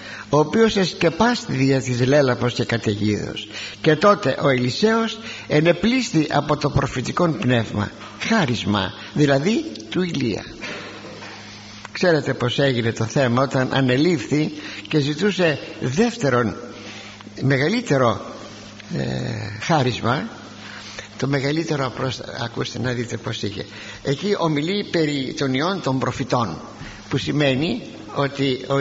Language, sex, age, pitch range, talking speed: Greek, male, 60-79, 115-165 Hz, 110 wpm